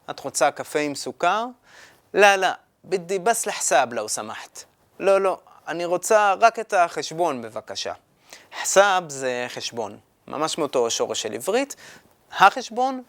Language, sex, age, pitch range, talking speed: Hebrew, male, 20-39, 165-220 Hz, 140 wpm